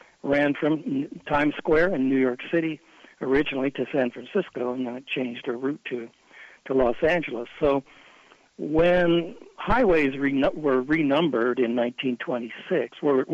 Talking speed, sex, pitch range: 125 wpm, male, 125-145 Hz